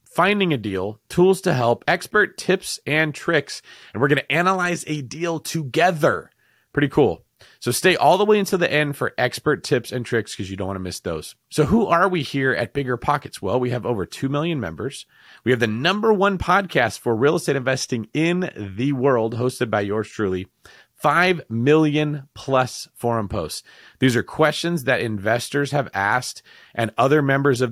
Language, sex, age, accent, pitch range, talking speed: English, male, 30-49, American, 110-155 Hz, 190 wpm